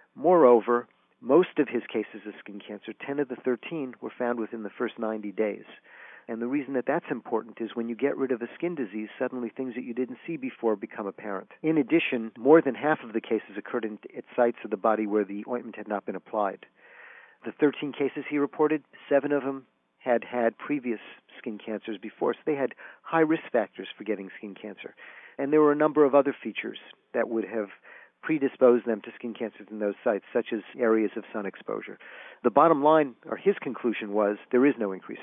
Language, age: English, 50-69